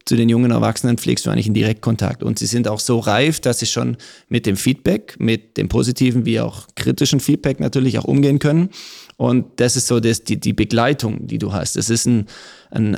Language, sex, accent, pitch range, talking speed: German, male, German, 110-130 Hz, 215 wpm